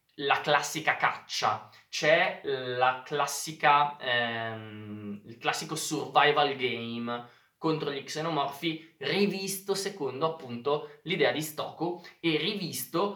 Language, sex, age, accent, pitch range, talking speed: Italian, male, 20-39, native, 115-155 Hz, 100 wpm